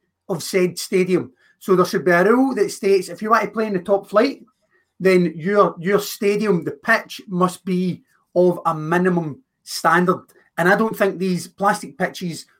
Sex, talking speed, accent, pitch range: male, 185 wpm, British, 175-215 Hz